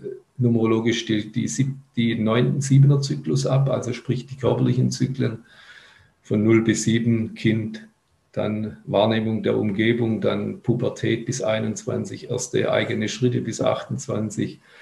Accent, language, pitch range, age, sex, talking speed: German, German, 110-130 Hz, 50-69, male, 125 wpm